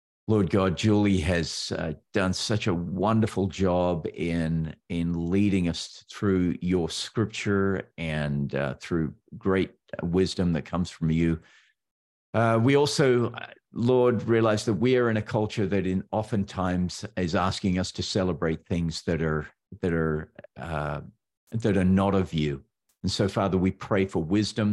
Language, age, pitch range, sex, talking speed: English, 50-69, 85-105 Hz, male, 155 wpm